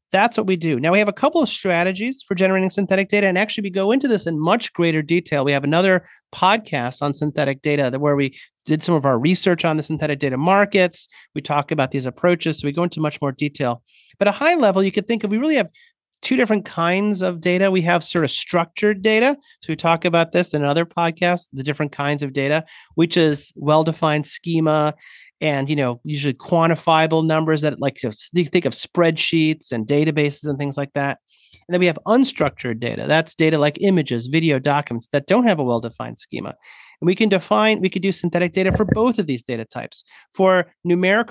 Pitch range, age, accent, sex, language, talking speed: 150-190 Hz, 30-49, American, male, English, 220 wpm